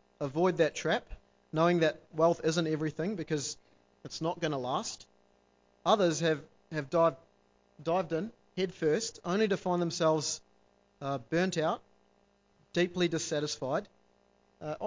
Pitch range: 125-175 Hz